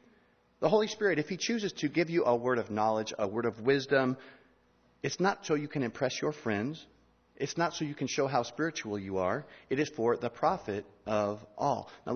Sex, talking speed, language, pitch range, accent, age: male, 210 wpm, English, 115-165 Hz, American, 40-59